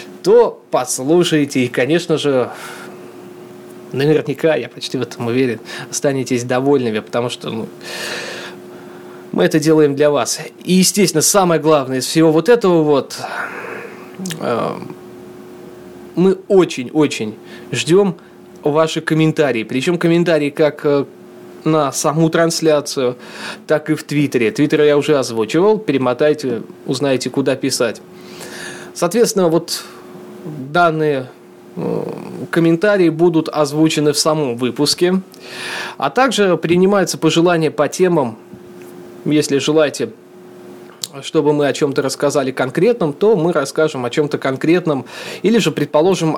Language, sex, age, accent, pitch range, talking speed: Russian, male, 20-39, native, 130-170 Hz, 110 wpm